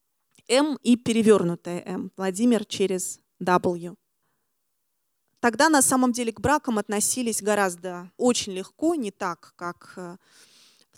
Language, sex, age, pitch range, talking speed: Russian, female, 20-39, 185-235 Hz, 115 wpm